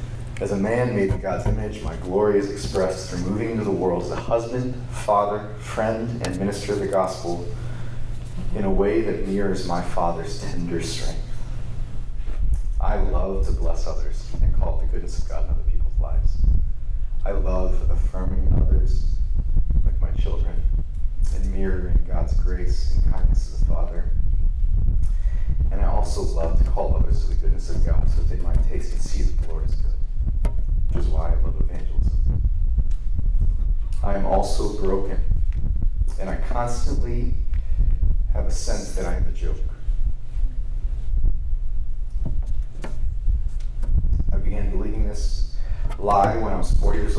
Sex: male